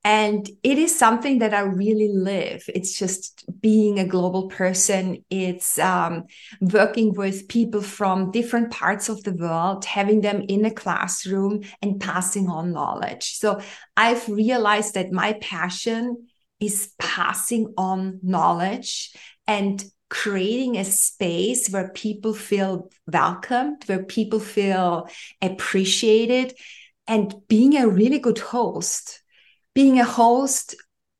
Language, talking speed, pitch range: English, 125 wpm, 190-230 Hz